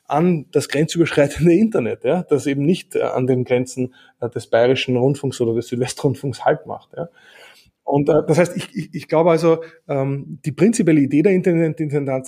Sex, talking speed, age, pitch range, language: male, 180 wpm, 20-39, 140-175 Hz, German